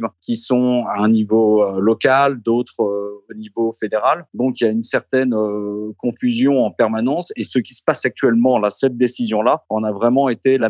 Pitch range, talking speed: 115-140 Hz, 185 wpm